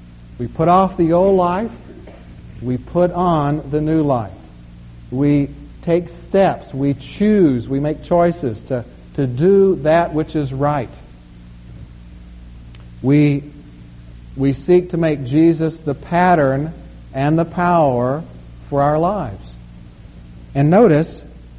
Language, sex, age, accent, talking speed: English, male, 50-69, American, 120 wpm